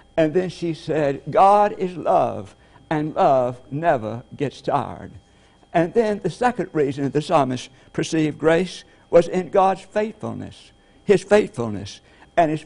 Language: English